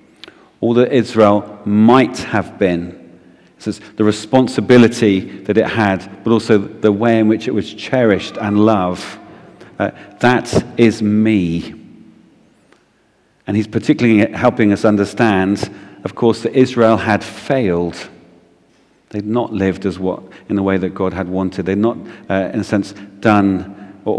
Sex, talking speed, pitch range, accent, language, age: male, 150 wpm, 100-115 Hz, British, English, 40-59